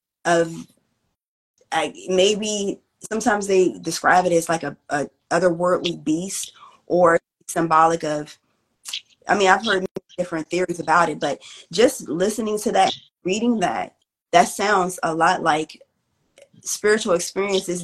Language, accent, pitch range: English, American, 165-190 Hz